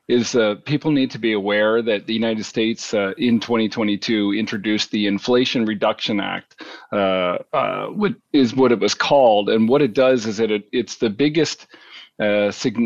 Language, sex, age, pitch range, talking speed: English, male, 40-59, 105-125 Hz, 180 wpm